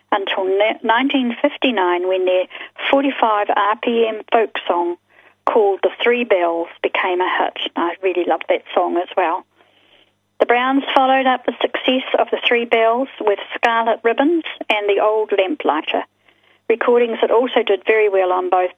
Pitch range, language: 195-260 Hz, English